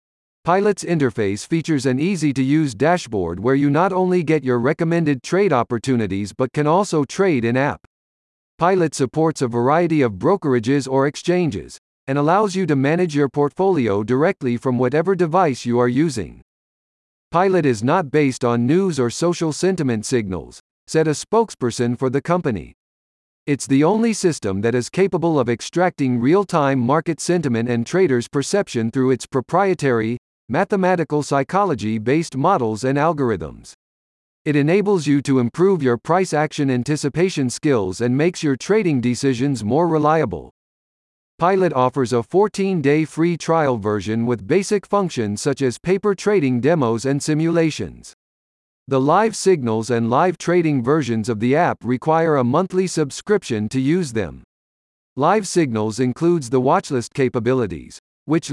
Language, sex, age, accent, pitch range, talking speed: English, male, 50-69, American, 120-170 Hz, 145 wpm